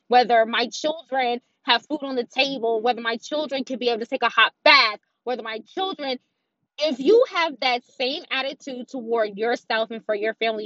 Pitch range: 210-255 Hz